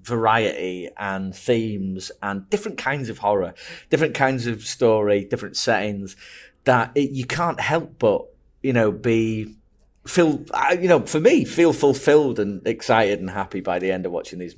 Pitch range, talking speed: 95-135 Hz, 160 wpm